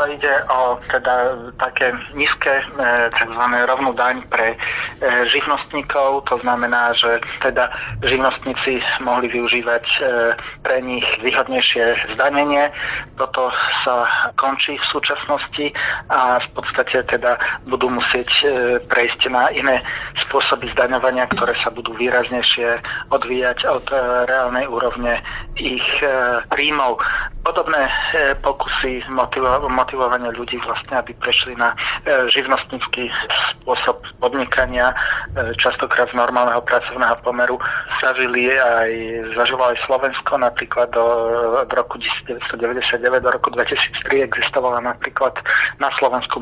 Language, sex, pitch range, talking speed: Slovak, male, 120-130 Hz, 105 wpm